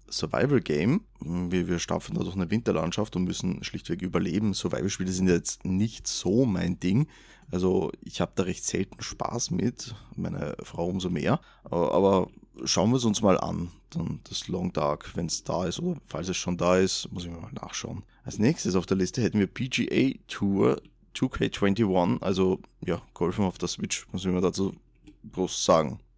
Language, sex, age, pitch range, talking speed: German, male, 20-39, 90-100 Hz, 185 wpm